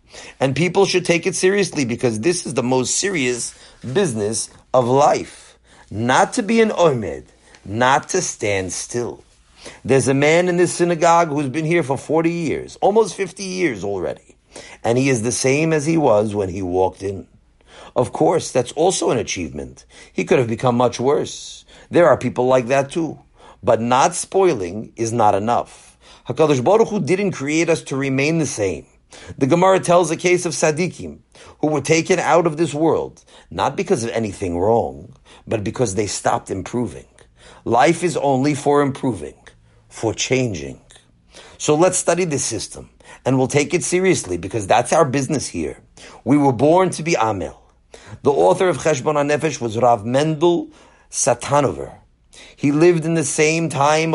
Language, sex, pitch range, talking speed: English, male, 120-170 Hz, 170 wpm